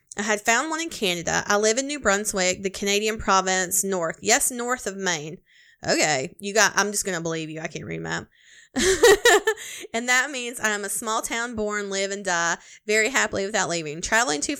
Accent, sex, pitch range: American, female, 190-240 Hz